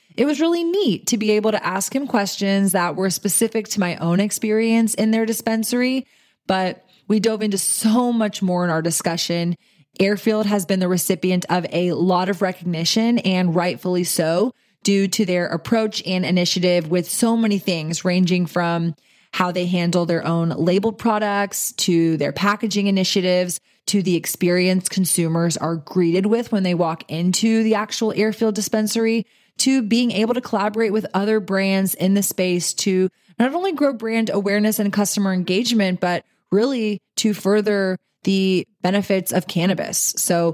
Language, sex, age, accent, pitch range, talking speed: English, female, 20-39, American, 180-220 Hz, 165 wpm